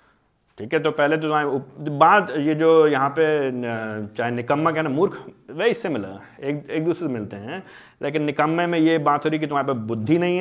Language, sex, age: Hindi, male, 30-49